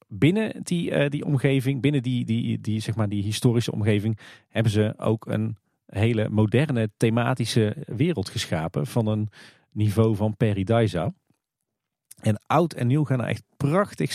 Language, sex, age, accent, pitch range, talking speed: Dutch, male, 40-59, Dutch, 105-140 Hz, 155 wpm